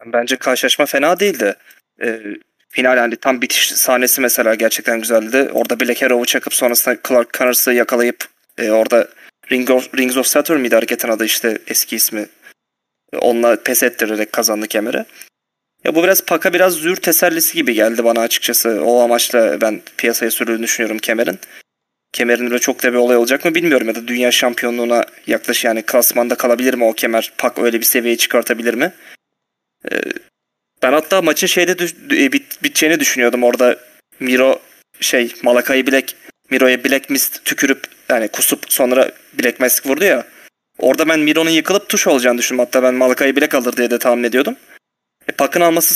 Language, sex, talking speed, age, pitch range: Turkish, male, 165 wpm, 30-49, 120-155 Hz